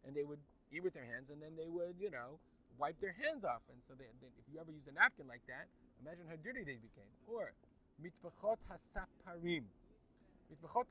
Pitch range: 135-180 Hz